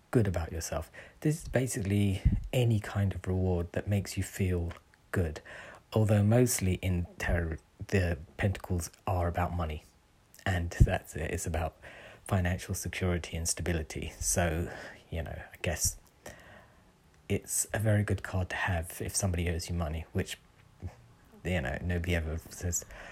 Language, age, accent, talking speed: English, 40-59, British, 145 wpm